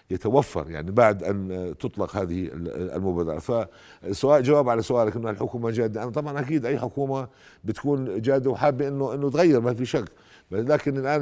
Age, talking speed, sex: 50-69, 160 wpm, male